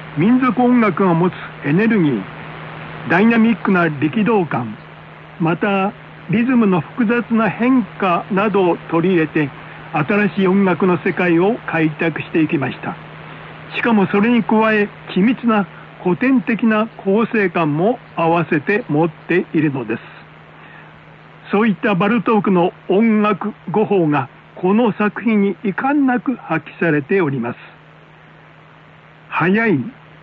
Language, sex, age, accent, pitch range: Korean, male, 60-79, Japanese, 165-215 Hz